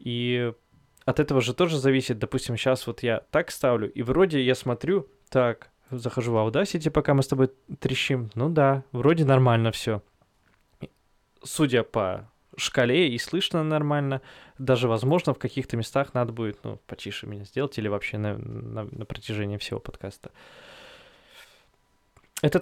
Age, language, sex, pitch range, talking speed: 20-39, Russian, male, 115-140 Hz, 150 wpm